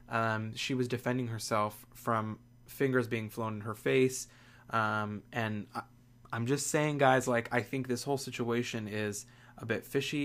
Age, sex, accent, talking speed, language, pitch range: 20-39, male, American, 165 wpm, English, 115-125 Hz